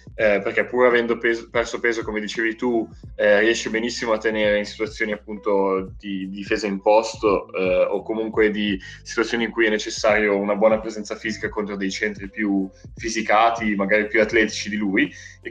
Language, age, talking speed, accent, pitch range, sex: Italian, 20-39, 180 wpm, native, 105-125 Hz, male